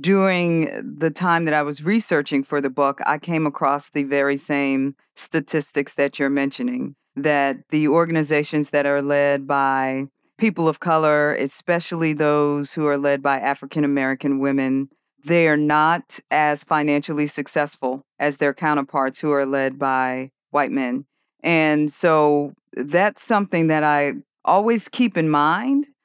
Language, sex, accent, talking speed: English, female, American, 145 wpm